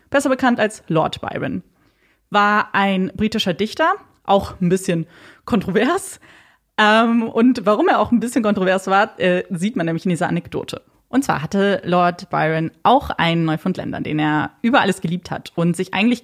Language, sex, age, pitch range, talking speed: German, female, 20-39, 185-245 Hz, 165 wpm